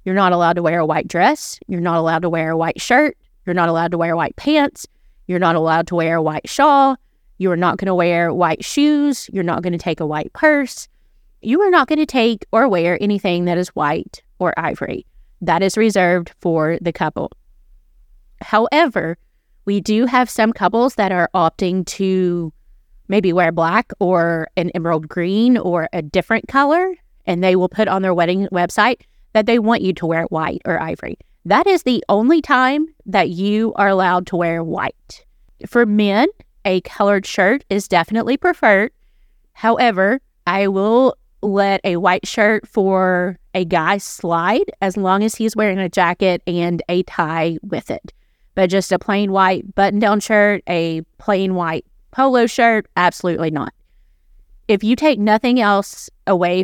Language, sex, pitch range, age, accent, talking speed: English, female, 170-220 Hz, 30-49, American, 175 wpm